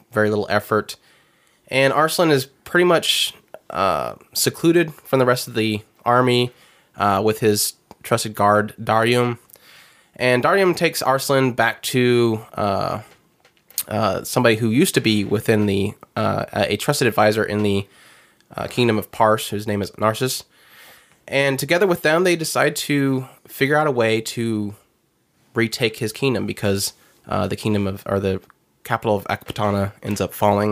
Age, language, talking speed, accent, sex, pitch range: 20-39, English, 155 wpm, American, male, 105-130 Hz